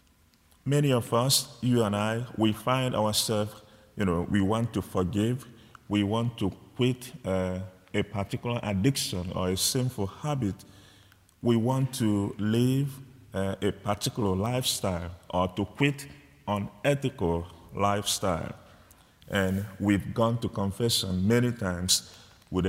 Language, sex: English, male